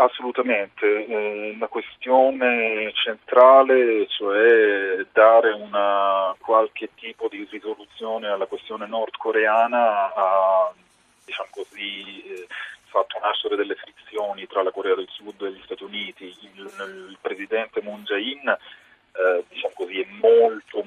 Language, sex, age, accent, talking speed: Italian, male, 40-59, native, 115 wpm